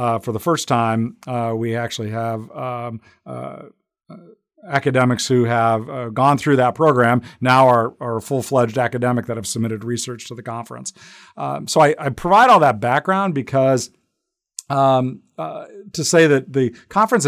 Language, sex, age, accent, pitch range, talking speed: English, male, 50-69, American, 115-130 Hz, 165 wpm